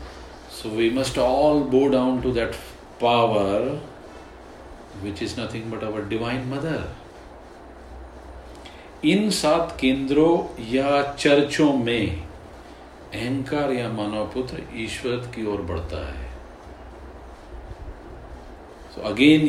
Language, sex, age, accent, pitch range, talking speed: Hindi, male, 40-59, native, 100-135 Hz, 85 wpm